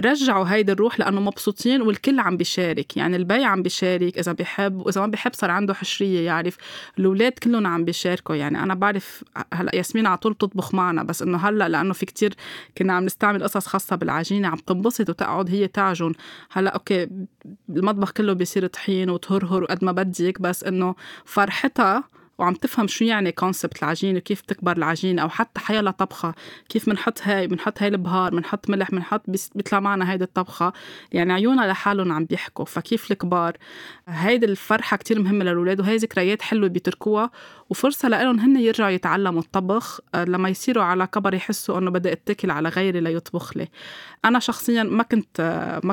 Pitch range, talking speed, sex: 180-215 Hz, 170 wpm, female